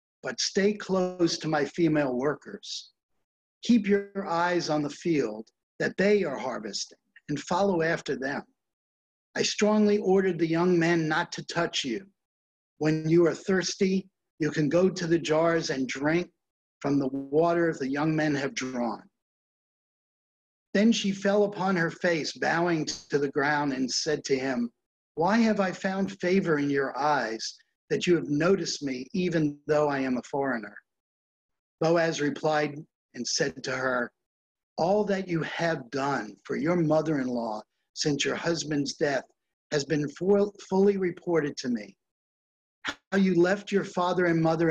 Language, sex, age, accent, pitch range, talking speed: English, male, 60-79, American, 140-185 Hz, 155 wpm